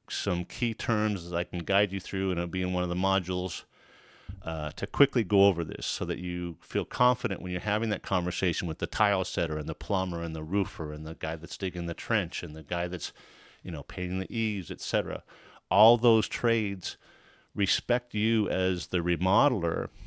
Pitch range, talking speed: 85-100 Hz, 205 wpm